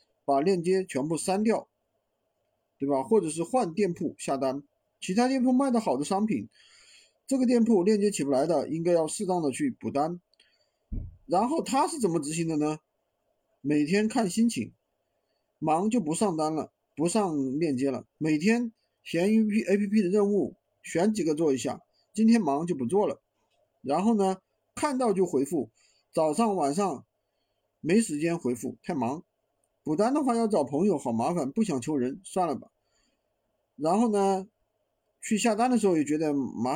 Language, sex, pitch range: Chinese, male, 155-230 Hz